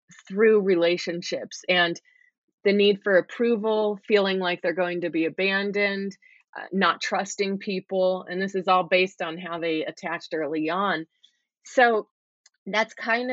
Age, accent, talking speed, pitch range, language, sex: 30-49, American, 145 wpm, 175-205 Hz, English, female